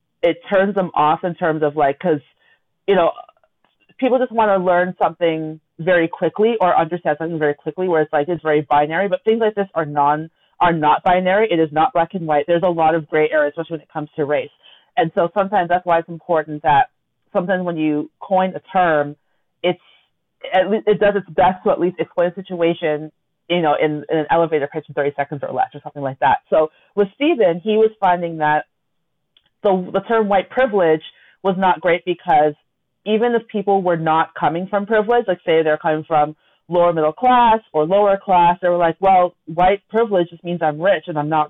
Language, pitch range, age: English, 155-195 Hz, 30-49